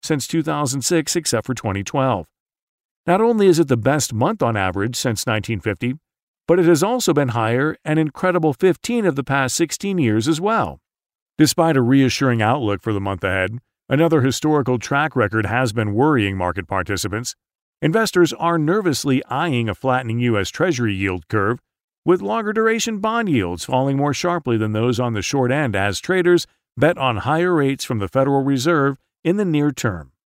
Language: English